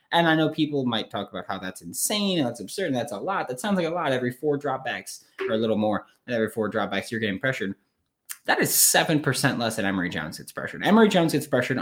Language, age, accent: English, 20-39, American